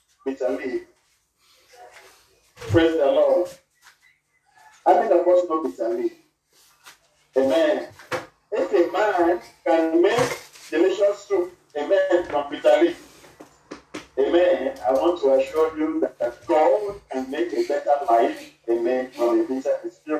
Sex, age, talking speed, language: male, 50-69, 115 wpm, English